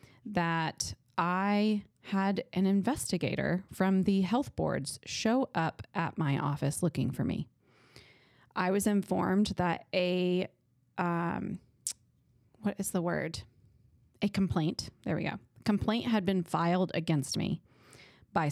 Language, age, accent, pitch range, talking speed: English, 20-39, American, 145-200 Hz, 125 wpm